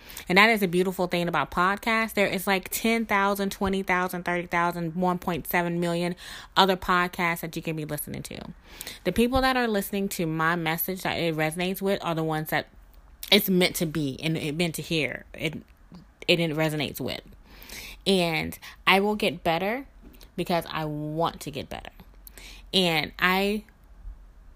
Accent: American